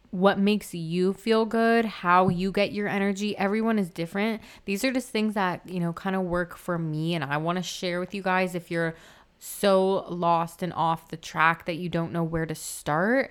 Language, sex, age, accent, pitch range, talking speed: English, female, 20-39, American, 165-195 Hz, 215 wpm